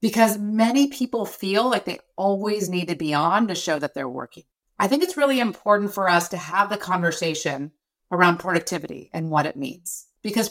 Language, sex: English, female